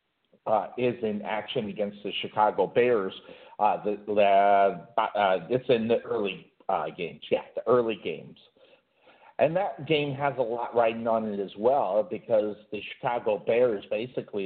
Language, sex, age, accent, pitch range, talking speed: English, male, 50-69, American, 105-155 Hz, 155 wpm